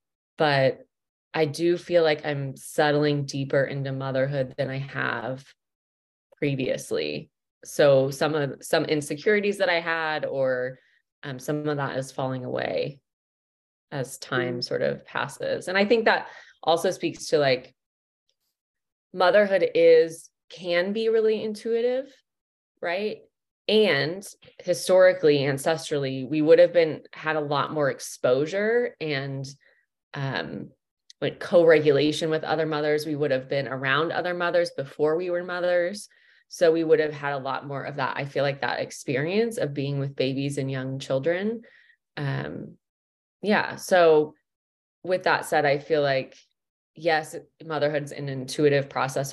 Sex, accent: female, American